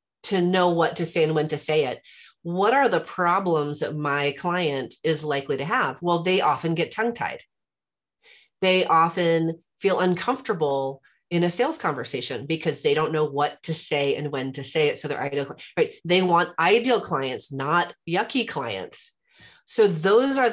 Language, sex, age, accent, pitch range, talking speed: English, female, 30-49, American, 155-245 Hz, 170 wpm